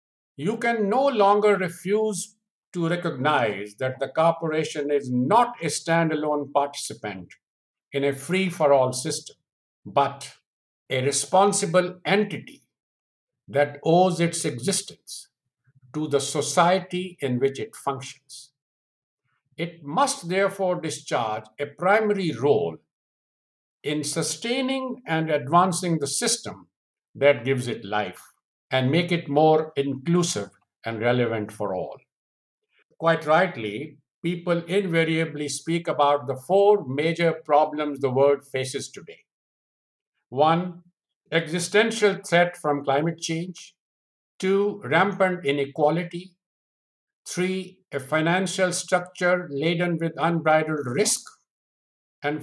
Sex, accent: male, Indian